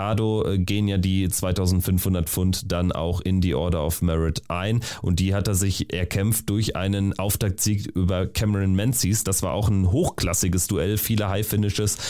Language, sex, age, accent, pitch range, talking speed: German, male, 30-49, German, 90-110 Hz, 170 wpm